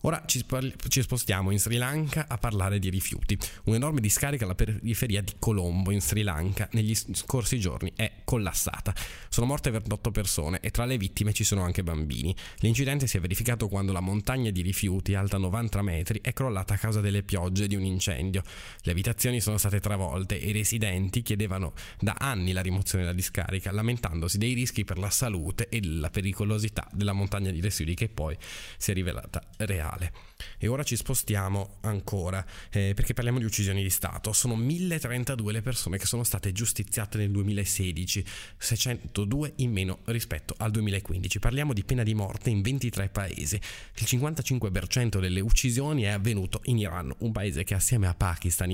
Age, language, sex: 20-39, Italian, male